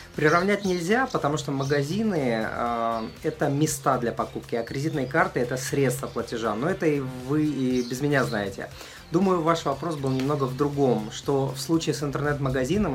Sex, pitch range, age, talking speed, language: male, 125-155 Hz, 20-39, 175 wpm, Russian